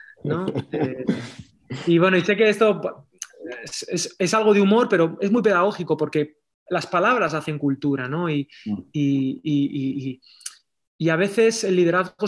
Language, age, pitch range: Spanish, 20-39, 140-180 Hz